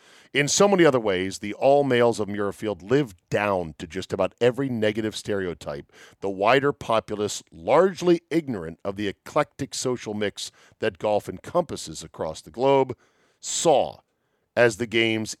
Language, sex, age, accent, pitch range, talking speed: English, male, 50-69, American, 105-145 Hz, 150 wpm